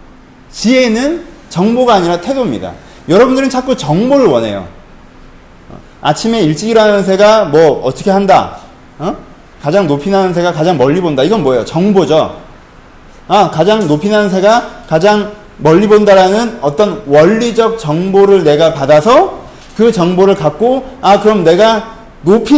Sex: male